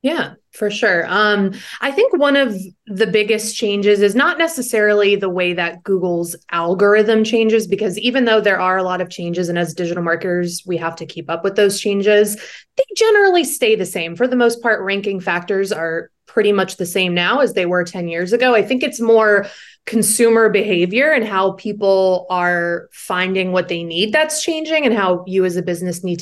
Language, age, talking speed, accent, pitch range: English, 20-39, 200 wpm, American, 180-215 Hz